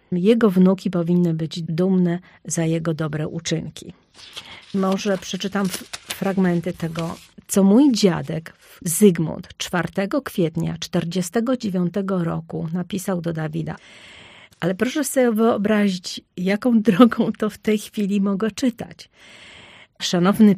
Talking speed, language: 110 wpm, Polish